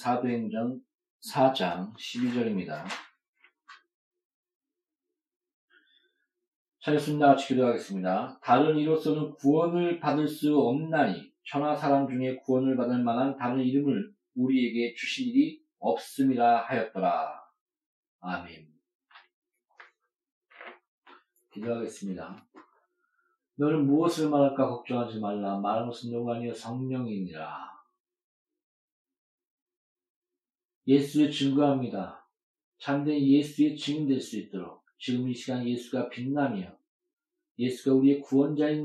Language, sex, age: Korean, male, 40-59